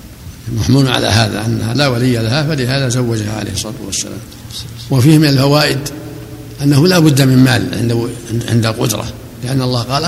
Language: Arabic